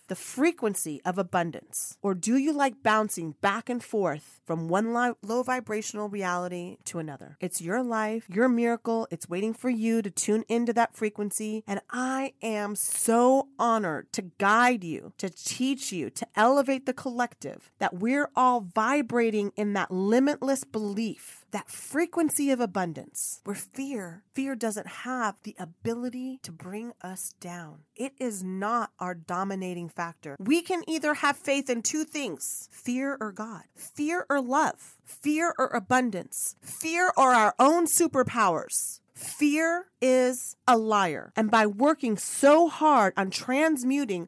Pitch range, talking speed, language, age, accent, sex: 200-275 Hz, 150 wpm, English, 30-49, American, female